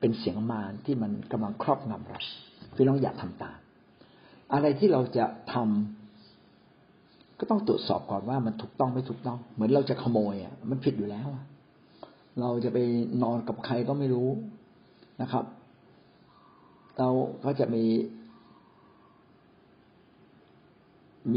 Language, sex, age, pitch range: Thai, male, 60-79, 110-140 Hz